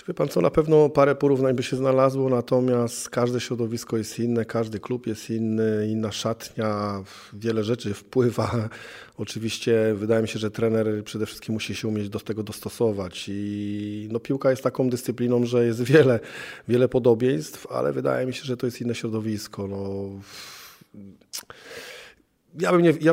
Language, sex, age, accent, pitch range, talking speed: Polish, male, 40-59, native, 105-120 Hz, 165 wpm